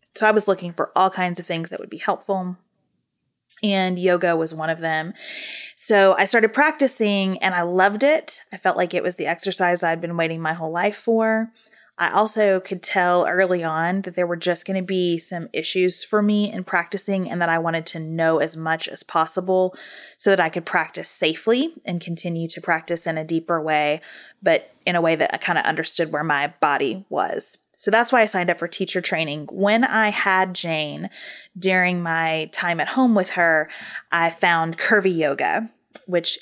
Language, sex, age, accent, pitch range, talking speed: English, female, 20-39, American, 165-200 Hz, 200 wpm